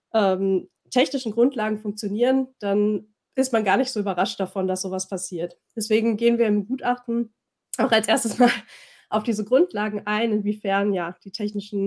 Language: English